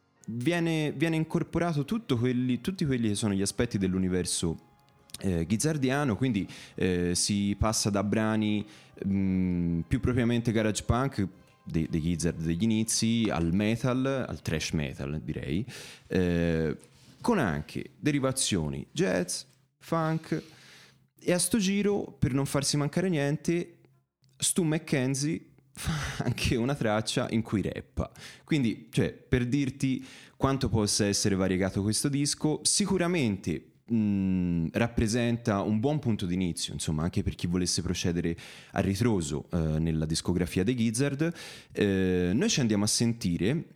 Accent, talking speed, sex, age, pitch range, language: native, 130 wpm, male, 30-49, 95-140 Hz, Italian